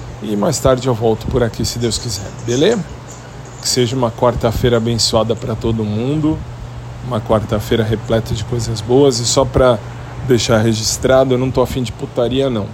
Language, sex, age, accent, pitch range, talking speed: Portuguese, male, 20-39, Brazilian, 110-125 Hz, 175 wpm